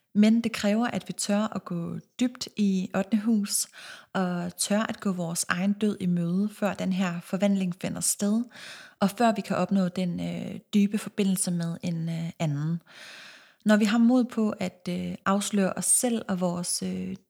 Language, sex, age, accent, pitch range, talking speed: Danish, female, 30-49, native, 180-215 Hz, 185 wpm